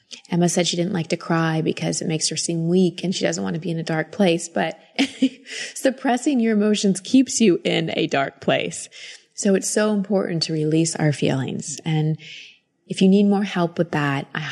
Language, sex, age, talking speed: English, female, 20-39, 205 wpm